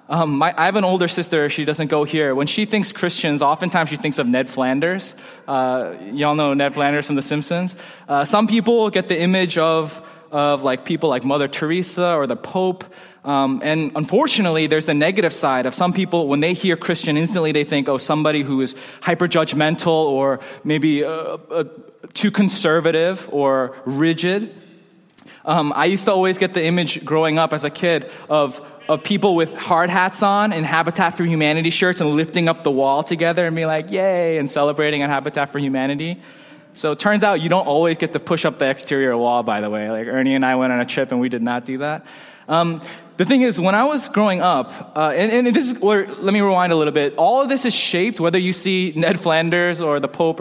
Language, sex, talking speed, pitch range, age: English, male, 215 wpm, 145-185 Hz, 20-39